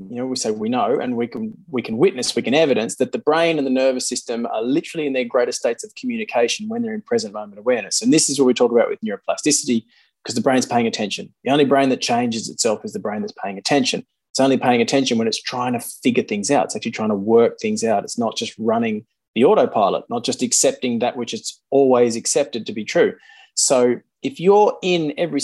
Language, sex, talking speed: English, male, 240 wpm